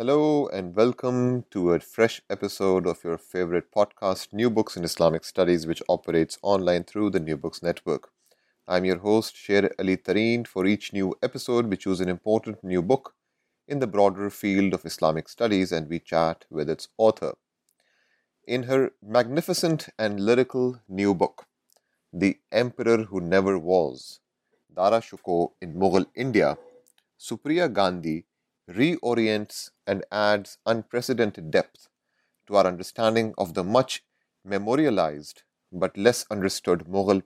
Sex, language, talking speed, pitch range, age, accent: male, English, 140 wpm, 90-120 Hz, 30-49, Indian